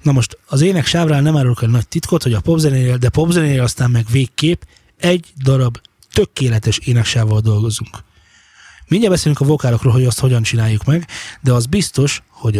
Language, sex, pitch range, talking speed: Hungarian, male, 120-150 Hz, 165 wpm